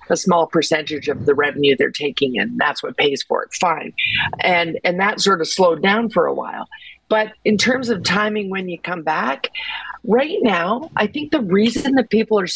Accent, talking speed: American, 205 wpm